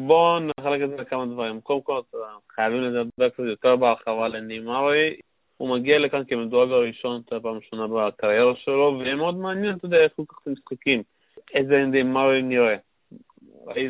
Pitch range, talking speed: 120-145 Hz, 170 wpm